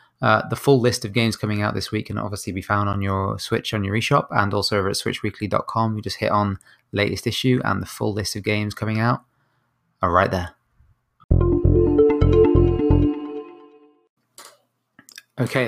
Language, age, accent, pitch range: English, 20-39, British, 100-115 Hz